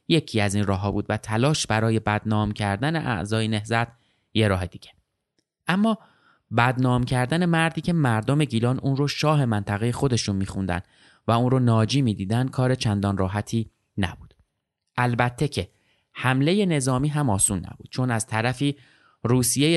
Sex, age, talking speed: male, 20-39, 145 wpm